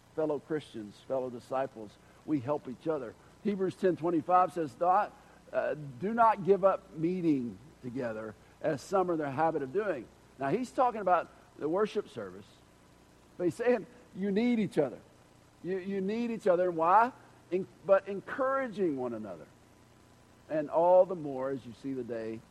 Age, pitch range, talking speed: 60-79, 135-190 Hz, 160 wpm